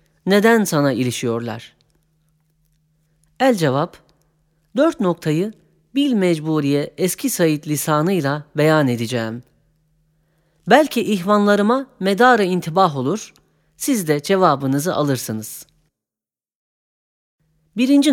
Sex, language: female, Turkish